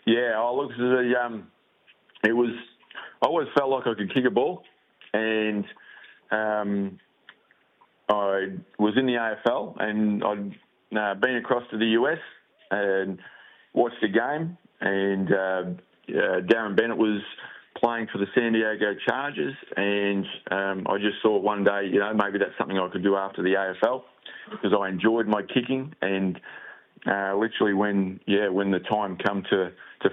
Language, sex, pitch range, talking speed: English, male, 95-110 Hz, 165 wpm